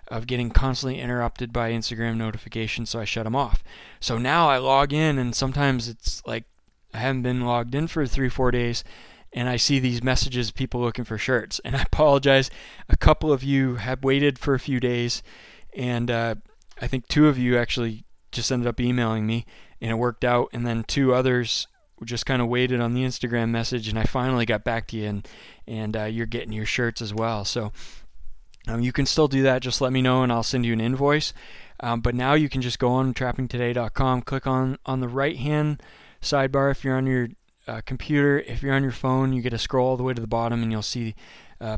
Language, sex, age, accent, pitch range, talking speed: English, male, 20-39, American, 115-135 Hz, 225 wpm